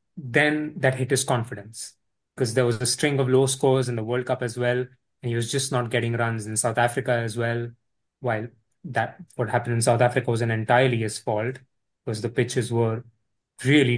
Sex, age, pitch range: male, 20-39, 115-135 Hz